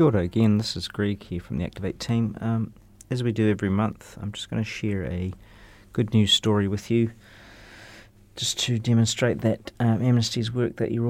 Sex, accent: male, Australian